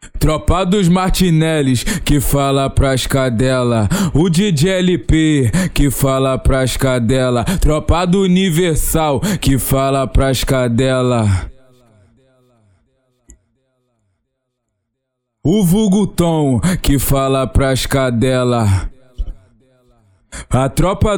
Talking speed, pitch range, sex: 80 wpm, 130-165 Hz, male